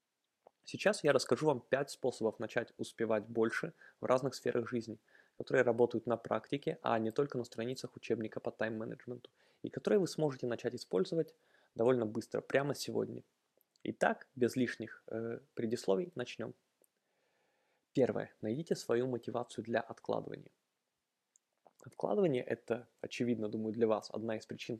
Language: Russian